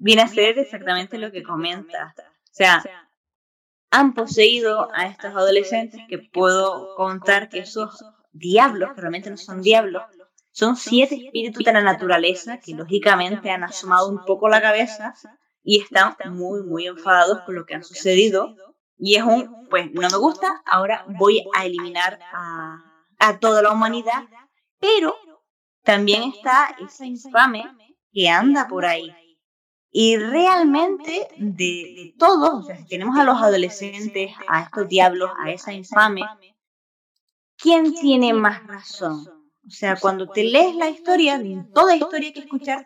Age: 10-29